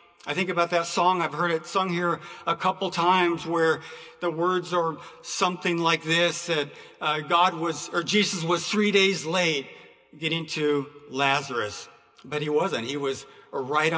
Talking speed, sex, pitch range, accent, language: 170 wpm, male, 155-190 Hz, American, English